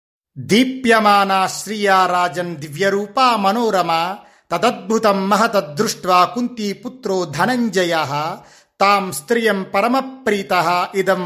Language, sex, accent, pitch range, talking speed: Telugu, male, native, 150-205 Hz, 80 wpm